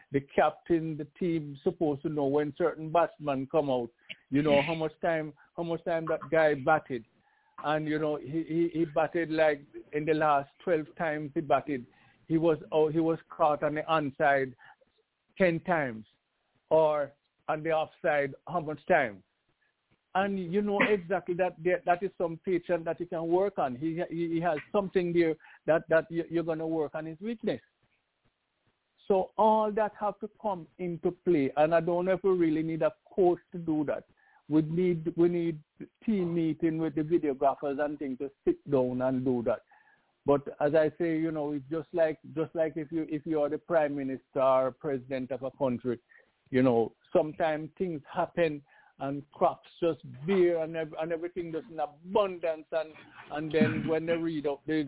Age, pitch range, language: 50-69, 145-170 Hz, English